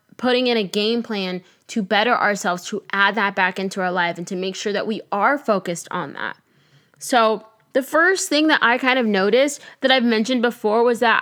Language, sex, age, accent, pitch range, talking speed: English, female, 10-29, American, 205-255 Hz, 215 wpm